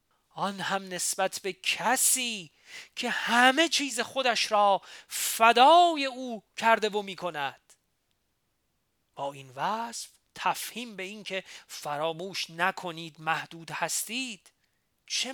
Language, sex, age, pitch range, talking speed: Persian, male, 40-59, 160-230 Hz, 110 wpm